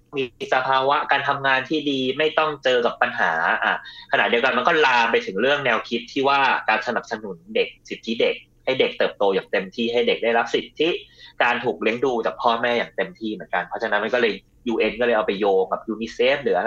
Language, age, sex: Thai, 20-39, male